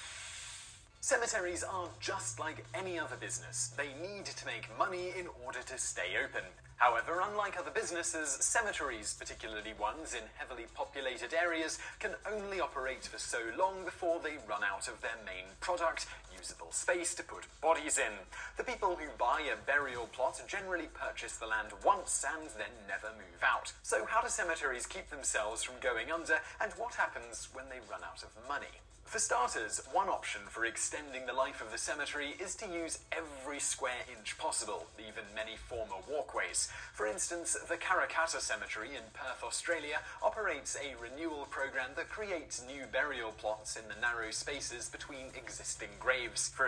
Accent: British